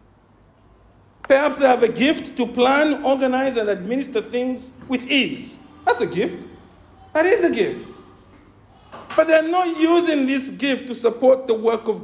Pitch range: 225-320 Hz